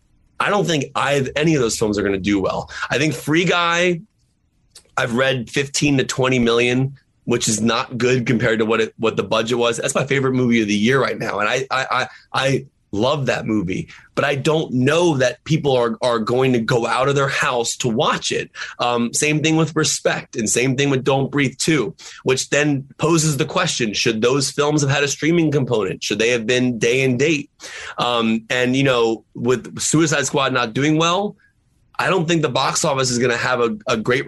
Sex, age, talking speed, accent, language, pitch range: male, 30-49, 215 wpm, American, English, 115-145 Hz